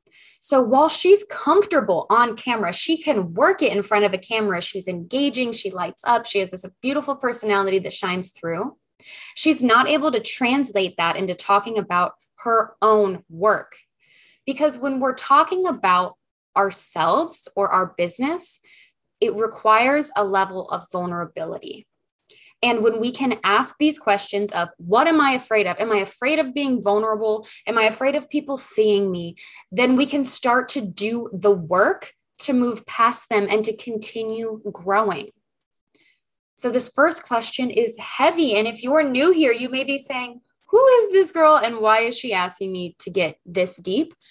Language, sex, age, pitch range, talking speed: English, female, 20-39, 195-275 Hz, 170 wpm